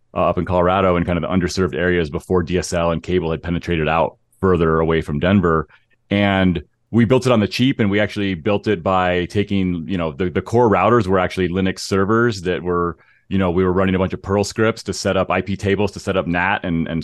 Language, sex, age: English, male, 30-49